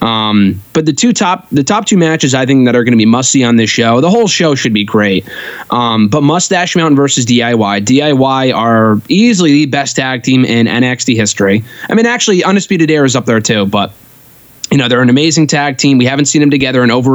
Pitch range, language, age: 120-150 Hz, English, 20-39